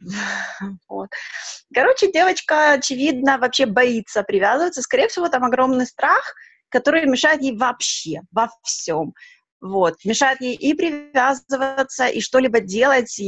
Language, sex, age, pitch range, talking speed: Russian, female, 20-39, 200-255 Hz, 115 wpm